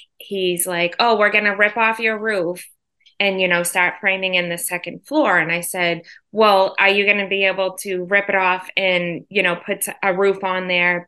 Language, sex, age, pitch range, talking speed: English, female, 20-39, 175-200 Hz, 210 wpm